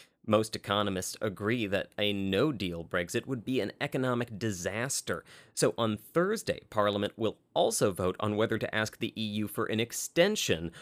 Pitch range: 100-125 Hz